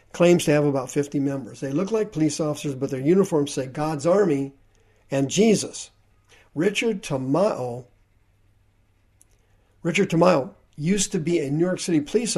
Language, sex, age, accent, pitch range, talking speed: English, male, 50-69, American, 105-165 Hz, 150 wpm